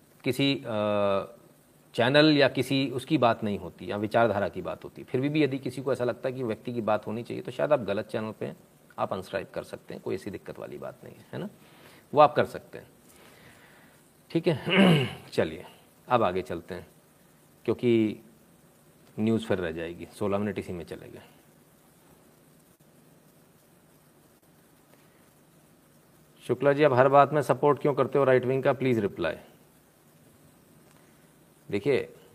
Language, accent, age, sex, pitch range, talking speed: Hindi, native, 40-59, male, 120-145 Hz, 160 wpm